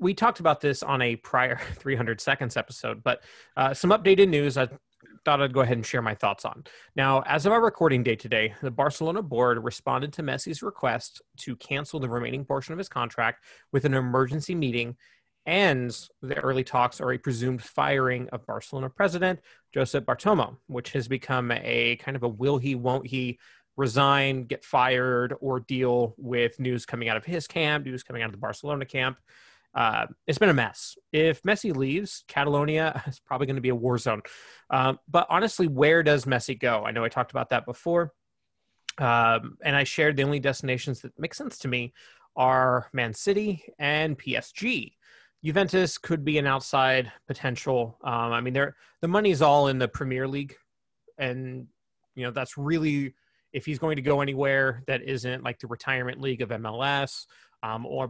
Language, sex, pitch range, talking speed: English, male, 125-150 Hz, 185 wpm